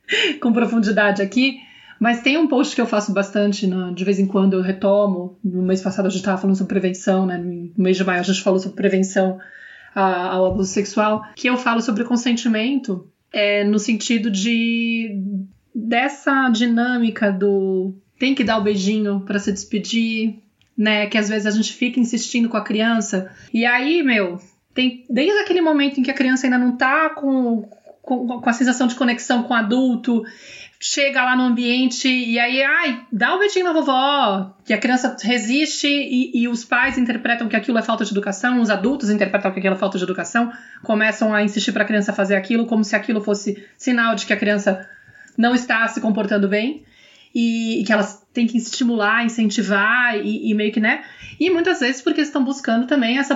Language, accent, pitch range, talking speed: Portuguese, Brazilian, 205-250 Hz, 195 wpm